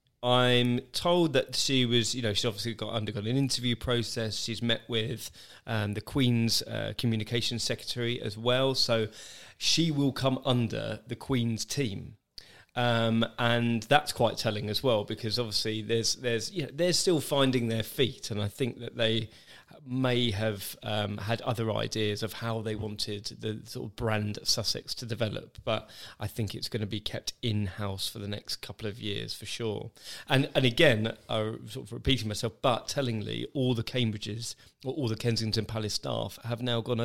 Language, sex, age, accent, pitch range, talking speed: English, male, 20-39, British, 110-125 Hz, 185 wpm